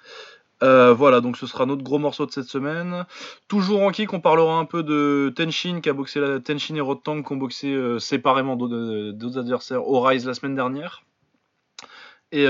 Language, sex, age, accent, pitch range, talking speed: French, male, 20-39, French, 120-155 Hz, 195 wpm